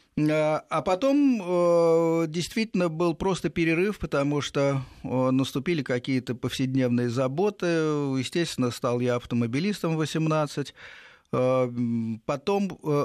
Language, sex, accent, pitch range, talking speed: Russian, male, native, 120-165 Hz, 85 wpm